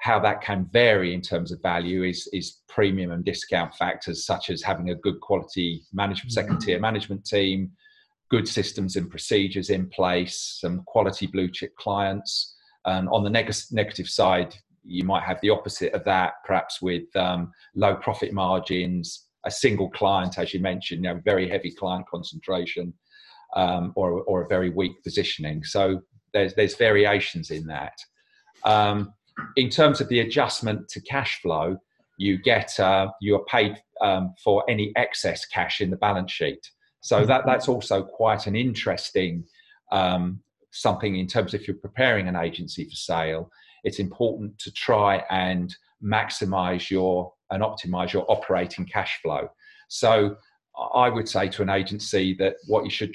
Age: 40-59